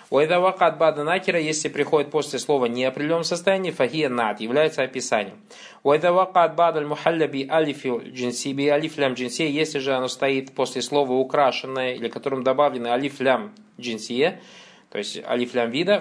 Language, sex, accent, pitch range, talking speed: Russian, male, native, 135-190 Hz, 155 wpm